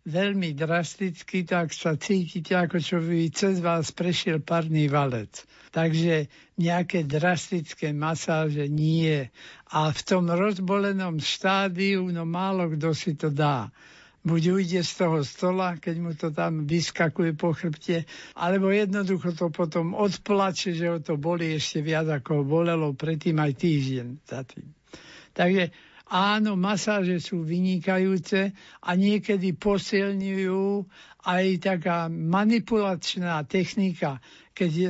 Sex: male